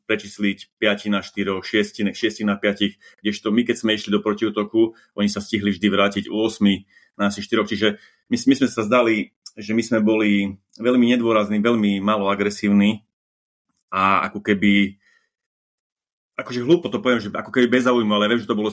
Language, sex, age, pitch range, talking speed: Slovak, male, 30-49, 95-110 Hz, 185 wpm